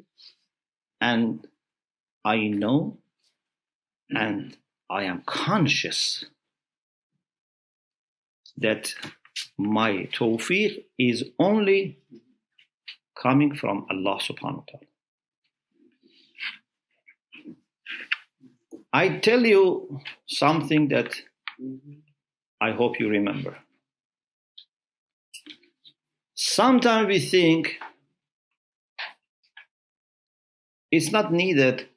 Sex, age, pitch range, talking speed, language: male, 50-69, 115-185 Hz, 60 wpm, English